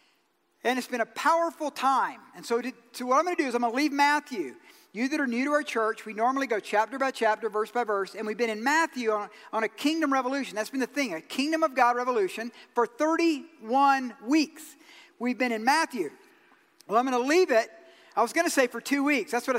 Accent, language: American, English